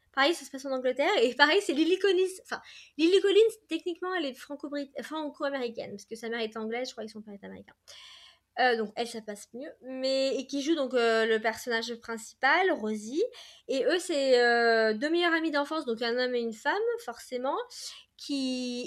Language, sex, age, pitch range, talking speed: French, female, 20-39, 235-320 Hz, 195 wpm